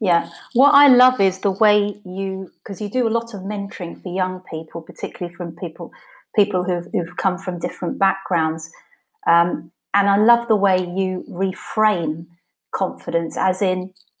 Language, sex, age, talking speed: English, female, 30-49, 165 wpm